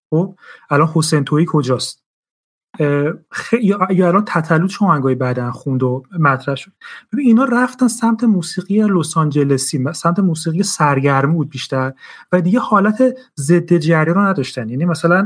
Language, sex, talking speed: Persian, male, 130 wpm